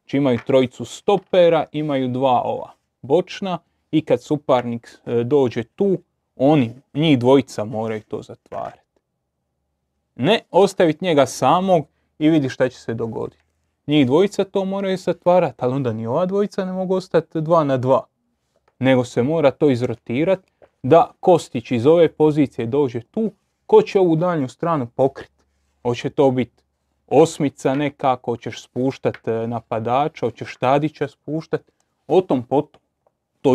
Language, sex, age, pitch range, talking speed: Croatian, male, 30-49, 120-155 Hz, 140 wpm